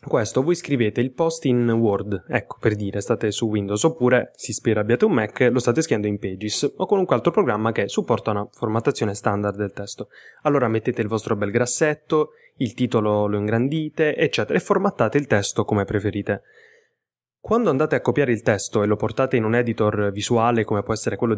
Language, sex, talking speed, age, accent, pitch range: Italian, male, 195 wpm, 10-29, native, 105-125 Hz